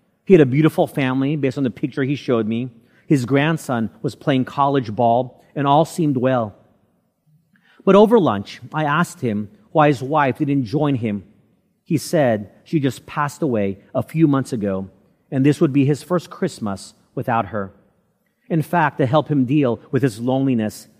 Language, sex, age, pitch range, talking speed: English, male, 40-59, 115-155 Hz, 175 wpm